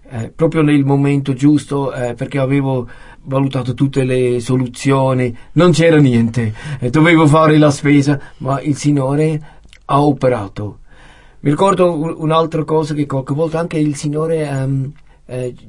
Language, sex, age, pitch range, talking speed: Italian, male, 50-69, 125-150 Hz, 140 wpm